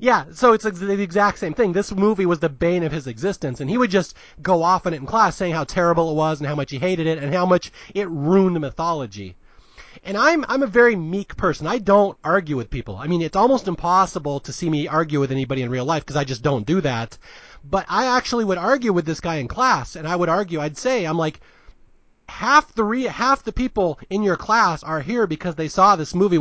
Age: 30-49